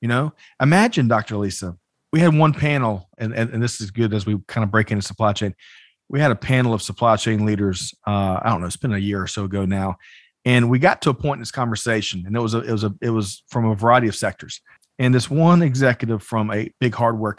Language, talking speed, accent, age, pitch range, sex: English, 255 wpm, American, 40-59, 105-130 Hz, male